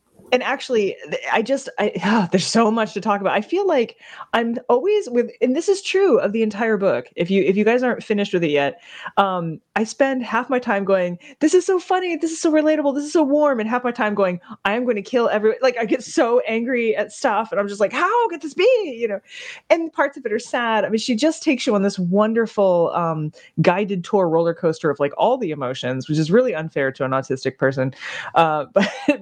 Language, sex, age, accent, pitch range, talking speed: English, female, 20-39, American, 175-255 Hz, 240 wpm